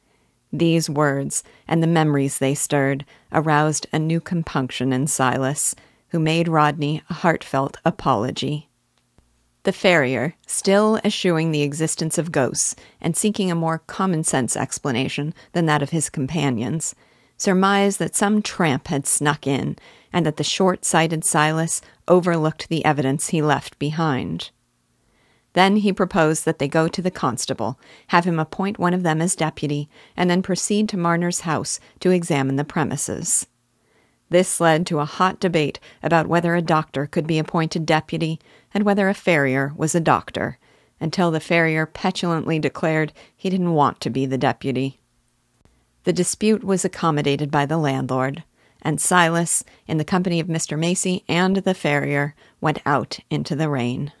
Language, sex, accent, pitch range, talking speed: English, female, American, 140-175 Hz, 155 wpm